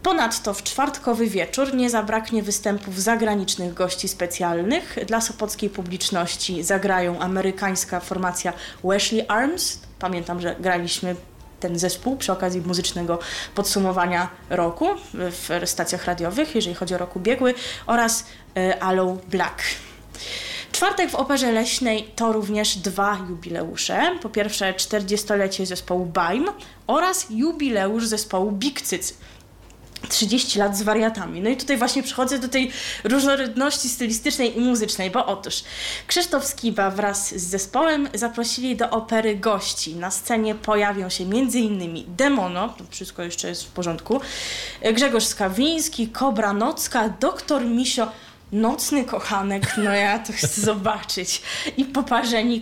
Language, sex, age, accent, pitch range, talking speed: Polish, female, 20-39, native, 190-245 Hz, 125 wpm